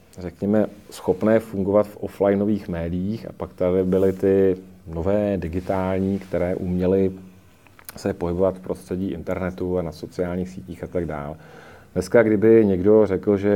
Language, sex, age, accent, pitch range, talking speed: Czech, male, 40-59, native, 90-105 Hz, 135 wpm